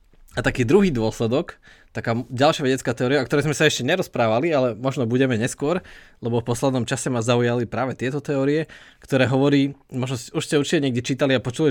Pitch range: 115-140 Hz